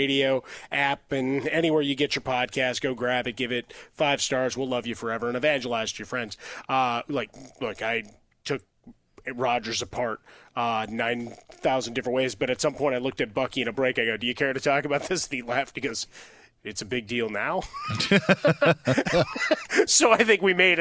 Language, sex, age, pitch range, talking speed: English, male, 30-49, 125-165 Hz, 205 wpm